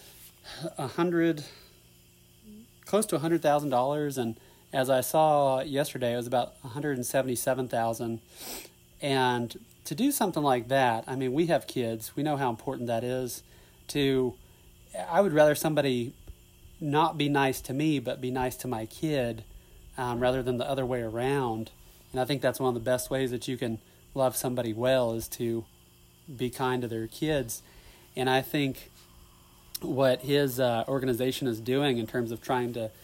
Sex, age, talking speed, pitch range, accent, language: male, 30-49, 165 wpm, 120-140 Hz, American, English